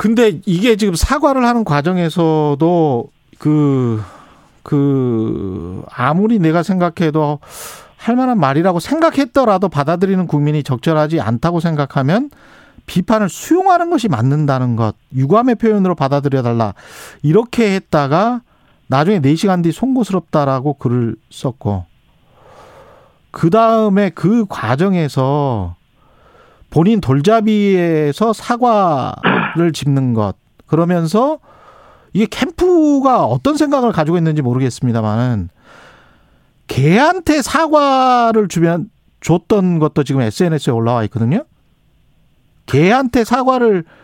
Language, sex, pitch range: Korean, male, 140-225 Hz